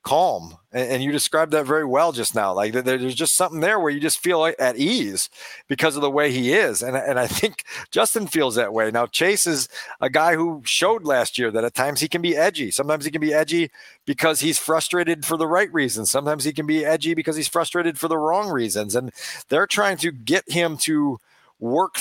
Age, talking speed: 40-59, 220 wpm